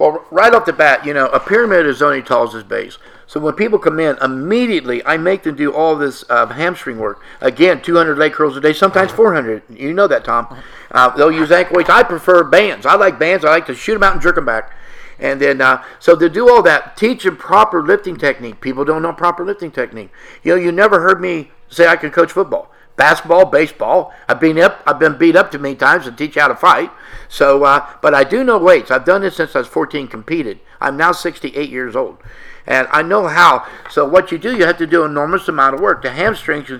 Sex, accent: male, American